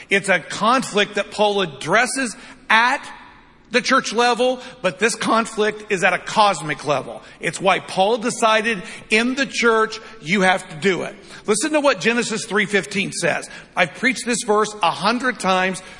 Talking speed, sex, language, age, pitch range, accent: 160 wpm, male, English, 50-69, 185-230 Hz, American